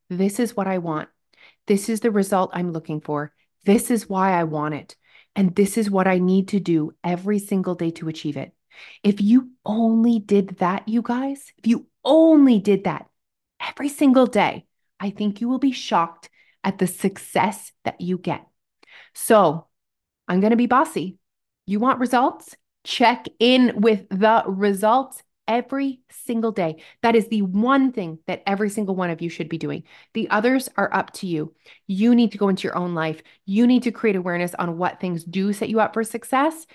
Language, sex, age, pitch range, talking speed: English, female, 30-49, 185-240 Hz, 190 wpm